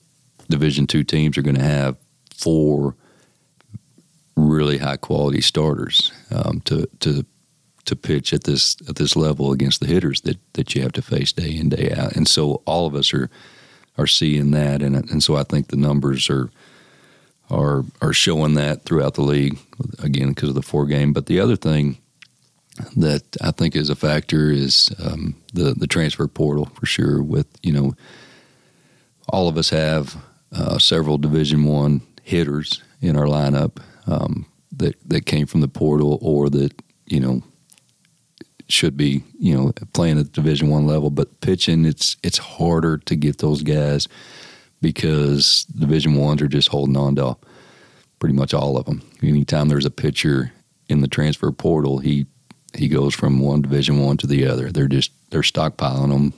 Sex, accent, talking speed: male, American, 175 wpm